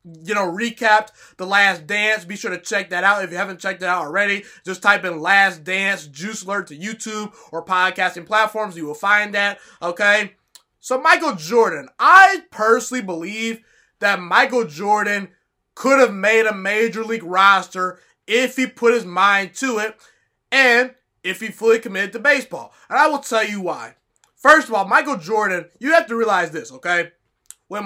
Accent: American